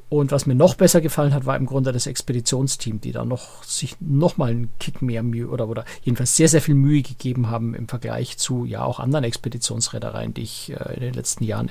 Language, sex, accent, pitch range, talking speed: German, male, German, 130-160 Hz, 225 wpm